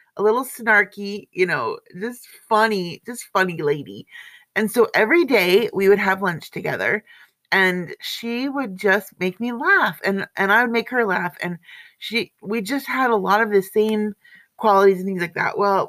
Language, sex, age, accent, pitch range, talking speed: English, female, 30-49, American, 185-240 Hz, 185 wpm